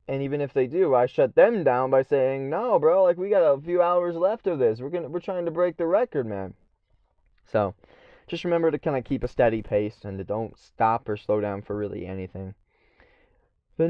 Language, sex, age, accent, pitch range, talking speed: English, male, 20-39, American, 115-160 Hz, 230 wpm